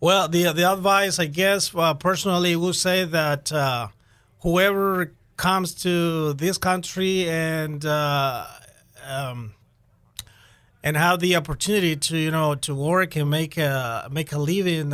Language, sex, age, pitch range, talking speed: English, male, 30-49, 130-170 Hz, 140 wpm